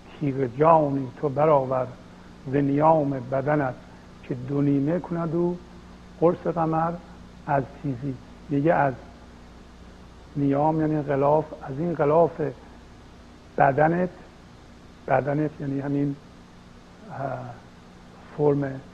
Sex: male